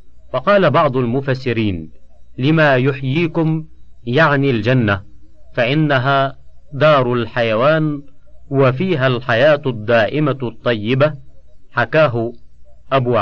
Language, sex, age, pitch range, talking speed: Arabic, male, 50-69, 120-150 Hz, 75 wpm